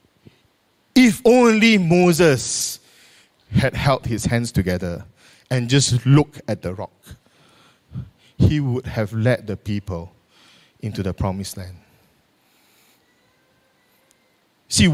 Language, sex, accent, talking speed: English, male, Malaysian, 100 wpm